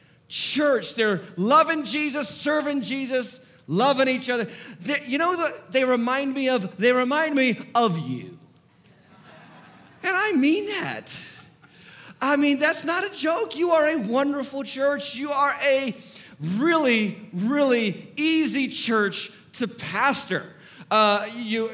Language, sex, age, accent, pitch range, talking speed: English, male, 40-59, American, 210-285 Hz, 120 wpm